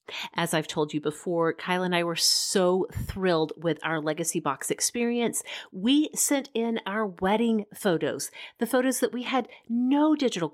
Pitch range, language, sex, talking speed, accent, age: 165-240 Hz, English, female, 165 wpm, American, 30-49